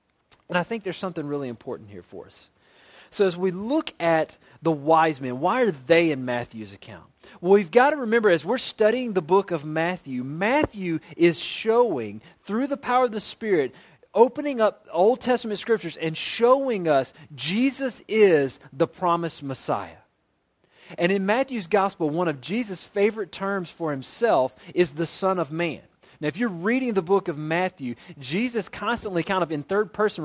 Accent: American